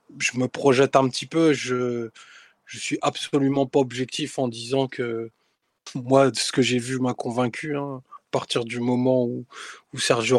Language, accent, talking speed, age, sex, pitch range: French, French, 175 wpm, 20-39, male, 120-135 Hz